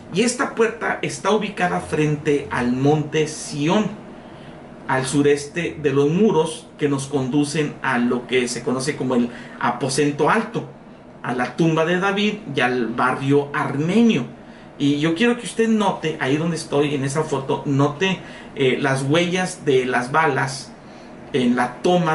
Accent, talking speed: Mexican, 155 wpm